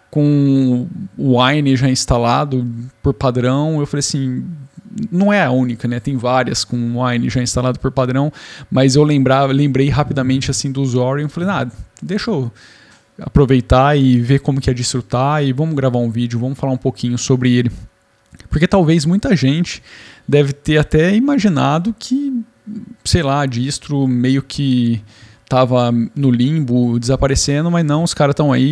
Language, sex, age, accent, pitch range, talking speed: Portuguese, male, 10-29, Brazilian, 125-150 Hz, 165 wpm